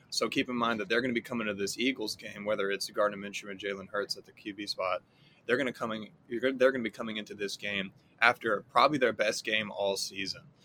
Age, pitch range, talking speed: 20-39, 100-120 Hz, 255 wpm